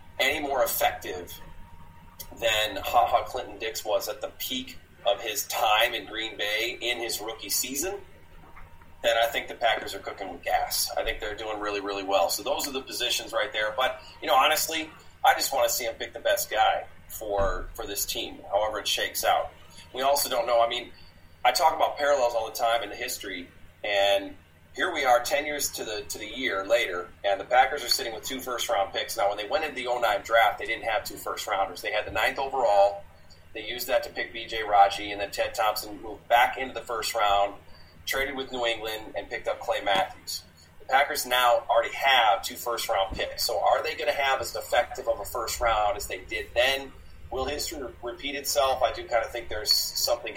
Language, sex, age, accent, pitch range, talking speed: English, male, 30-49, American, 85-130 Hz, 215 wpm